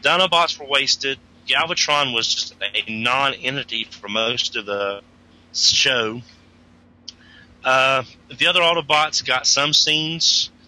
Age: 30-49